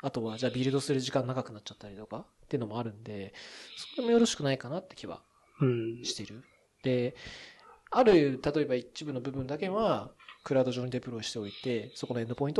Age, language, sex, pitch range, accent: 20-39, Japanese, male, 110-145 Hz, native